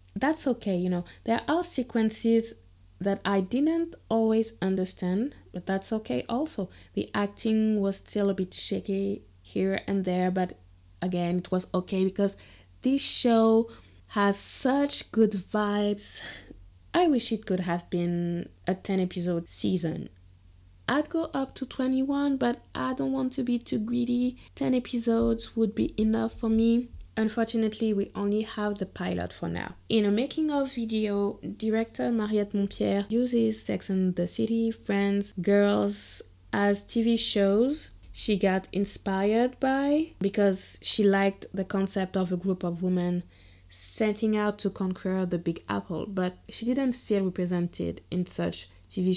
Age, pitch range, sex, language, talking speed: 20-39, 180-230 Hz, female, English, 150 wpm